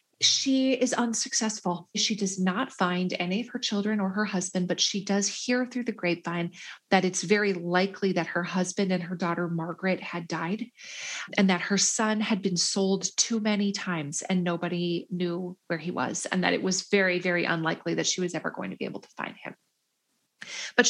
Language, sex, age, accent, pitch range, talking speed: English, female, 30-49, American, 180-235 Hz, 200 wpm